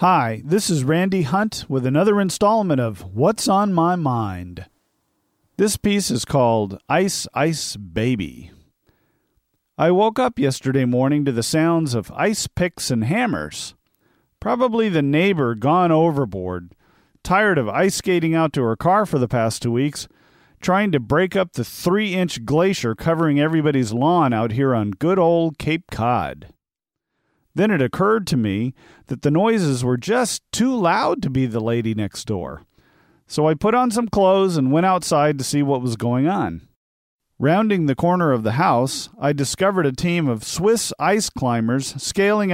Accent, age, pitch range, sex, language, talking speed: American, 40-59, 125-175 Hz, male, English, 165 wpm